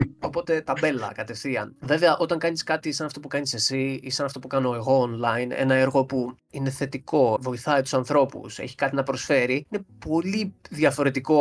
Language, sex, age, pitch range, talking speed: Greek, male, 20-39, 135-165 Hz, 180 wpm